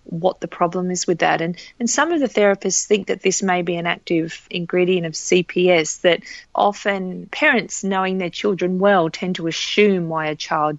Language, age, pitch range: English, 40-59, 165-220 Hz